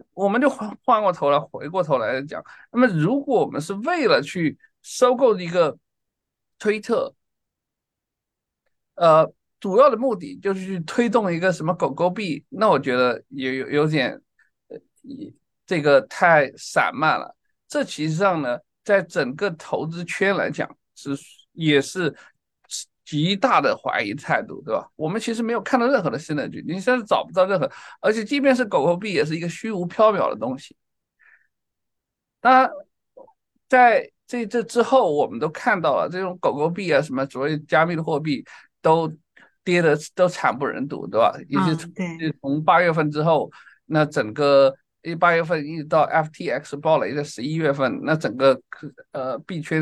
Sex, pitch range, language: male, 150-230 Hz, Chinese